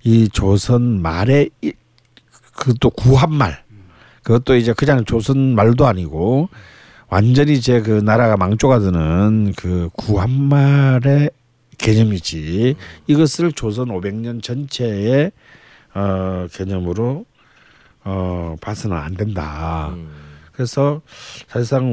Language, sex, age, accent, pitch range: Korean, male, 50-69, native, 95-130 Hz